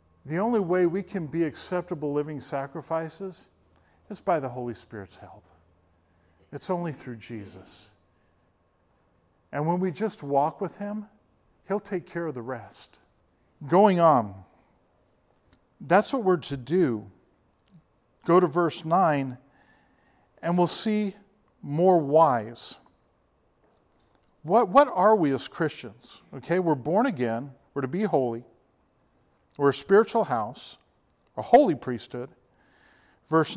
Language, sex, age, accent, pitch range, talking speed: English, male, 50-69, American, 120-185 Hz, 125 wpm